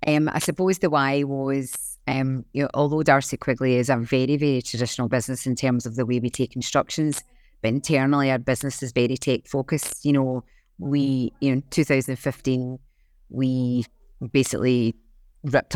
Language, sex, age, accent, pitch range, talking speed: English, female, 30-49, British, 130-140 Hz, 180 wpm